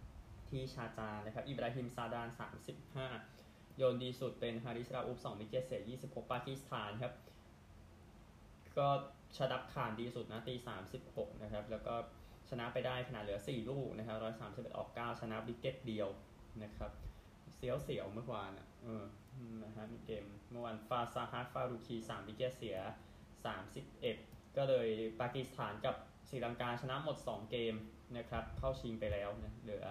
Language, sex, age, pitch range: Thai, male, 20-39, 110-130 Hz